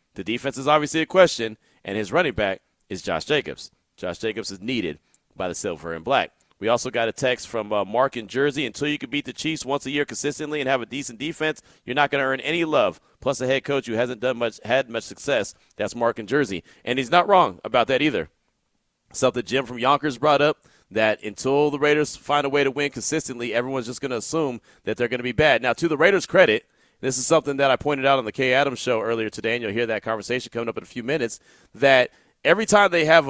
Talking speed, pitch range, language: 250 wpm, 120-150 Hz, English